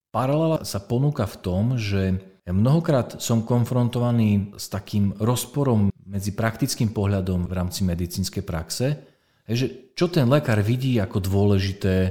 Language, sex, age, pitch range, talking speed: Slovak, male, 40-59, 90-115 Hz, 135 wpm